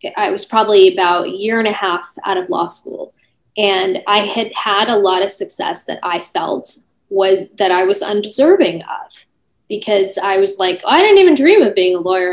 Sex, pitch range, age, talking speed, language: female, 195-295 Hz, 10-29, 205 wpm, English